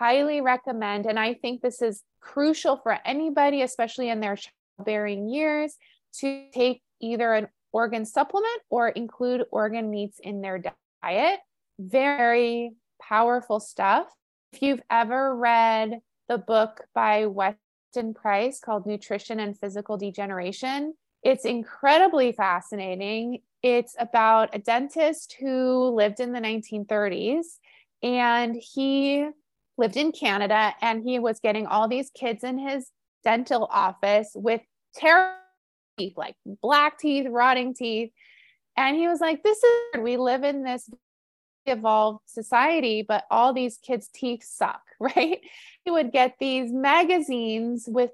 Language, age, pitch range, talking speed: English, 20-39, 220-275 Hz, 130 wpm